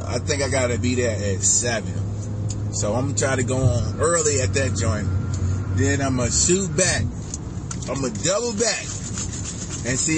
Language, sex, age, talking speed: English, male, 30-49, 200 wpm